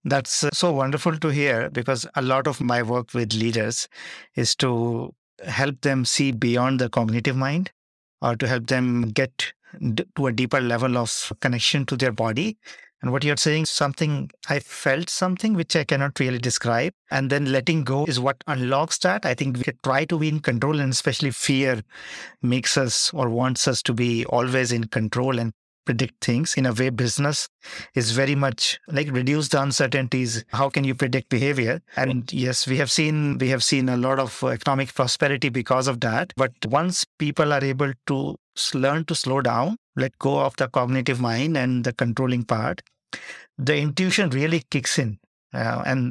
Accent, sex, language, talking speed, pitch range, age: Indian, male, English, 180 wpm, 125-150 Hz, 50-69